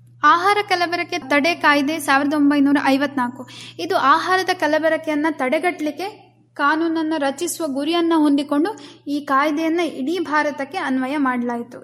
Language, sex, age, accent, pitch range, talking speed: Kannada, female, 10-29, native, 280-335 Hz, 105 wpm